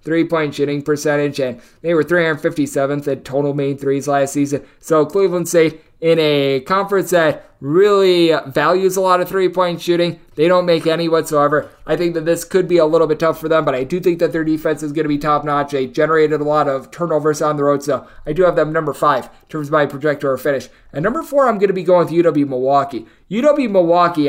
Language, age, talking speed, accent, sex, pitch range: English, 20-39, 220 wpm, American, male, 145-175 Hz